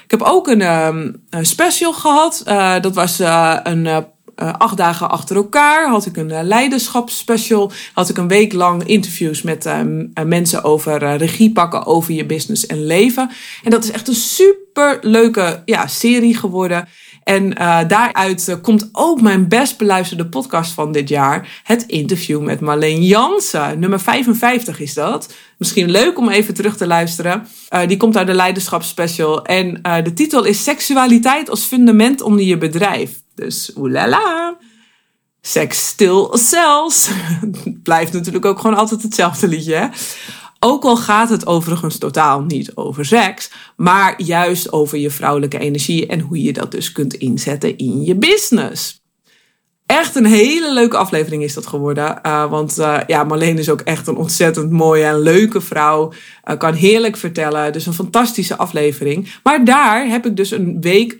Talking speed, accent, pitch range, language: 160 wpm, Dutch, 160-225 Hz, Dutch